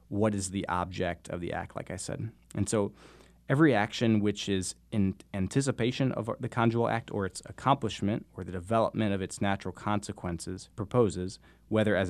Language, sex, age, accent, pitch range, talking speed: English, male, 20-39, American, 95-110 Hz, 175 wpm